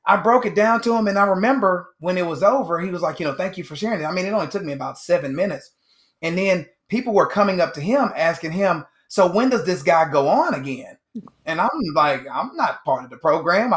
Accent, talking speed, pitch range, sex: American, 255 wpm, 155-200 Hz, male